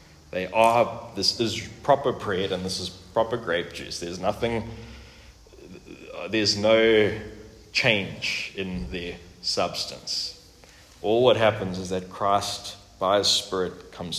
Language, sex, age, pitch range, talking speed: English, male, 20-39, 95-120 Hz, 125 wpm